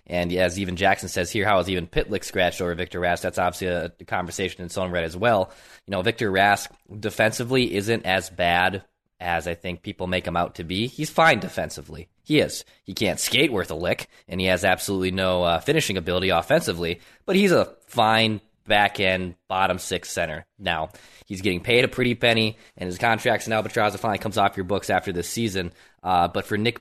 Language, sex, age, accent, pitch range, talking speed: English, male, 20-39, American, 90-110 Hz, 210 wpm